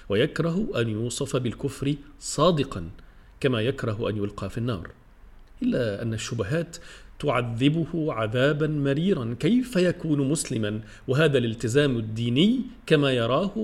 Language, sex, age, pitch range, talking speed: Arabic, male, 40-59, 115-155 Hz, 110 wpm